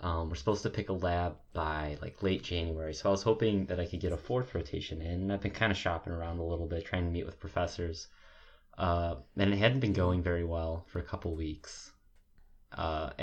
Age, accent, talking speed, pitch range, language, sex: 20-39, American, 230 wpm, 85-100 Hz, English, male